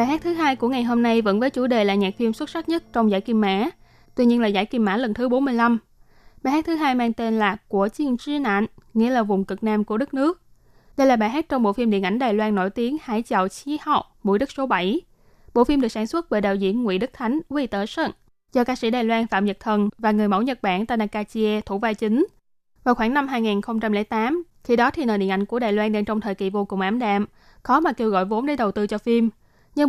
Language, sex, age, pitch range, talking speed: Vietnamese, female, 20-39, 210-255 Hz, 275 wpm